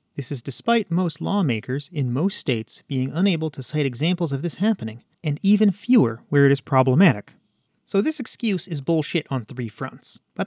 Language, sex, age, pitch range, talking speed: English, male, 30-49, 130-180 Hz, 185 wpm